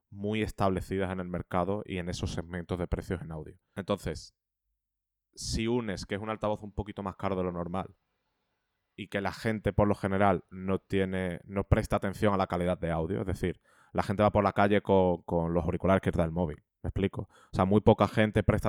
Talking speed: 220 wpm